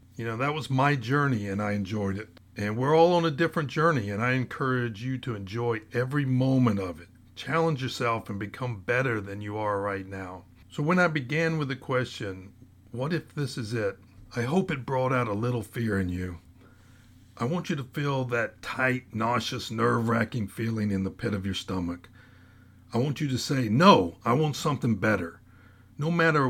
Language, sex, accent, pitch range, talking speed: English, male, American, 100-130 Hz, 195 wpm